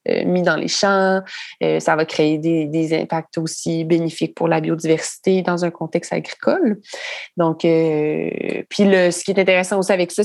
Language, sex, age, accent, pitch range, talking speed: French, female, 20-39, Canadian, 175-195 Hz, 175 wpm